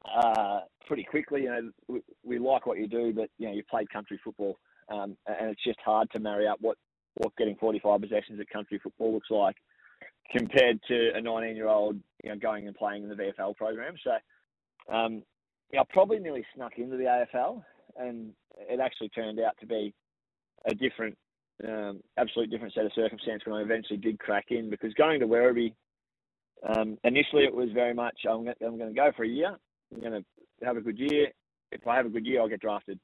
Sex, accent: male, Australian